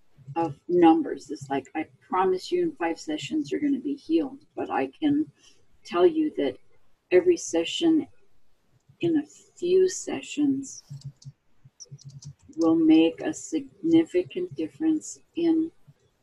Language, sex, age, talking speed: English, female, 40-59, 120 wpm